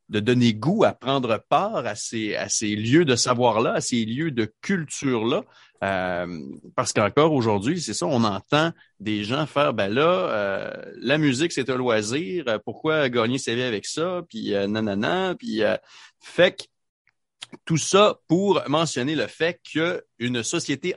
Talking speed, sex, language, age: 170 wpm, male, French, 30-49